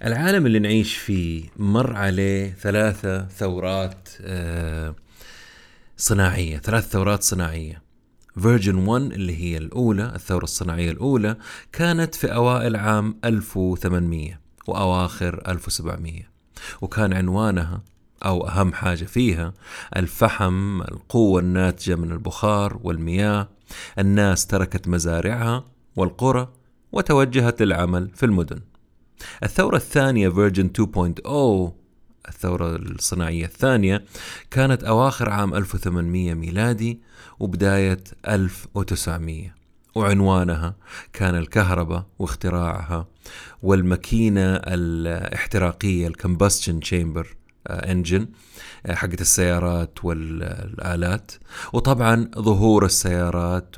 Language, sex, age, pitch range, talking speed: Arabic, male, 30-49, 90-110 Hz, 85 wpm